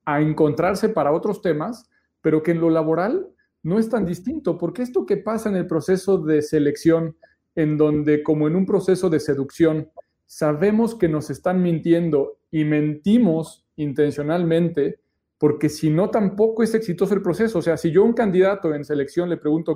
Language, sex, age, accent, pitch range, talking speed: Spanish, male, 40-59, Mexican, 155-205 Hz, 175 wpm